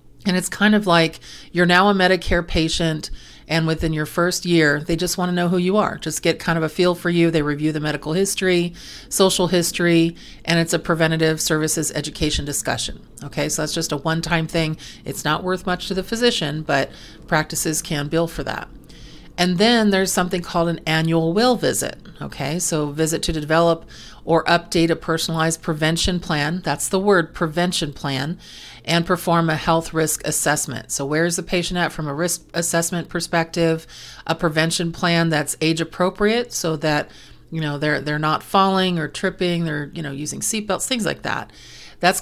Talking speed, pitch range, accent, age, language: 190 wpm, 155-175 Hz, American, 40-59, English